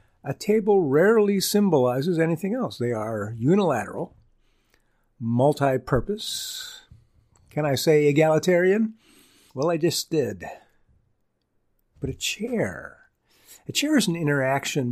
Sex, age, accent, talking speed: male, 50-69, American, 105 wpm